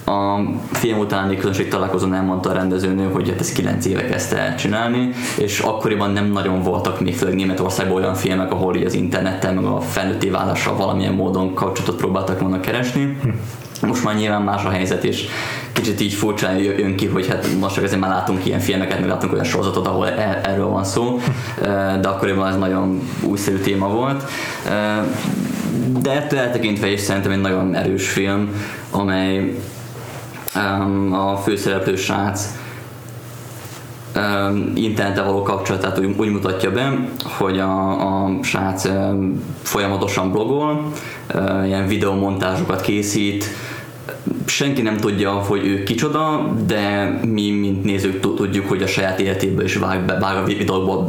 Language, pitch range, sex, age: Hungarian, 95-110 Hz, male, 20-39